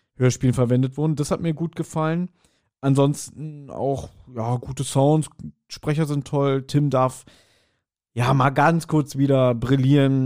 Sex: male